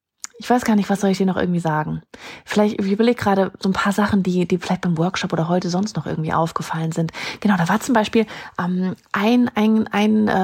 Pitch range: 180-220 Hz